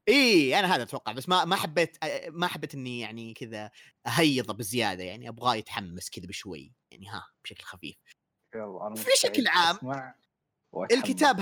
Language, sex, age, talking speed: Arabic, male, 30-49, 145 wpm